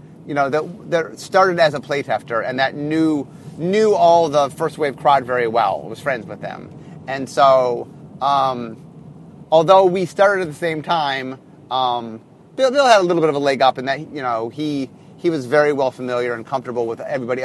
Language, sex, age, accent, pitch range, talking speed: English, male, 30-49, American, 135-180 Hz, 200 wpm